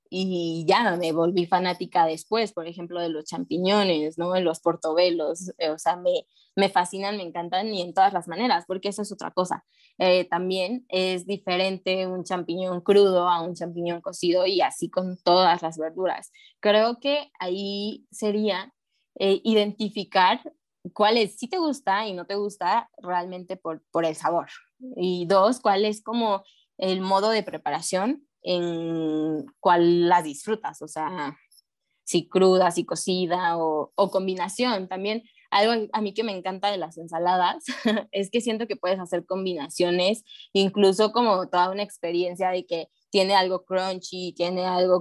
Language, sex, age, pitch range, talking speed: Spanish, female, 20-39, 175-205 Hz, 160 wpm